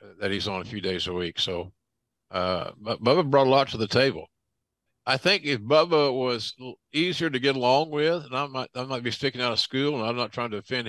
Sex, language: male, English